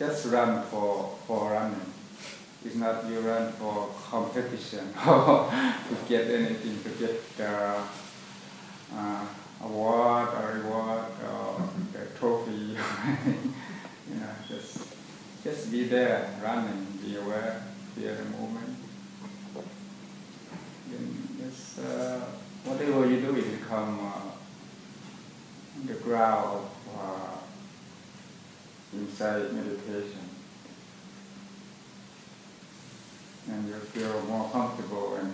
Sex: male